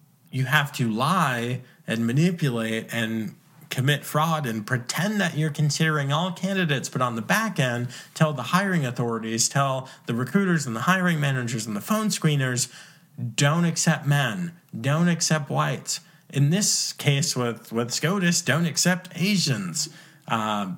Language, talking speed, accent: English, 150 wpm, American